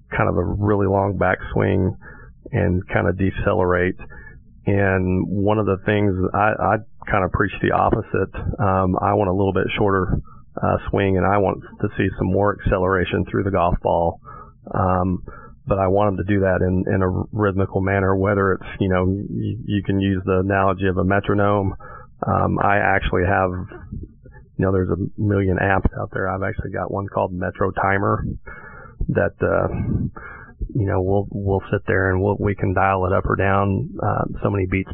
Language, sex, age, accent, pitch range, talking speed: English, male, 40-59, American, 95-100 Hz, 190 wpm